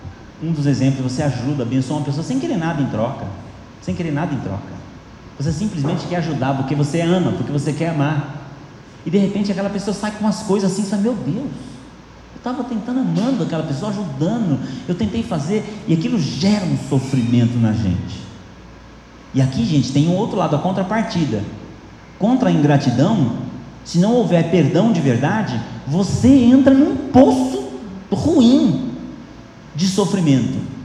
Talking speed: 165 wpm